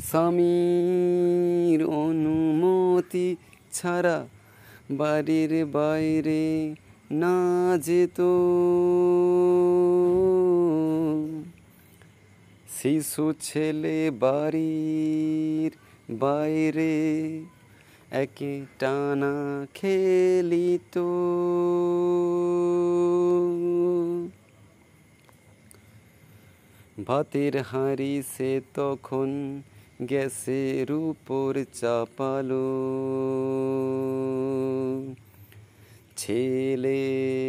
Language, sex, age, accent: Bengali, male, 30-49, native